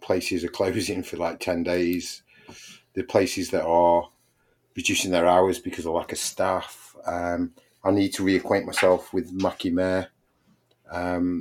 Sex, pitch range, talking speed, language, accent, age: male, 85-95 Hz, 155 wpm, English, British, 30-49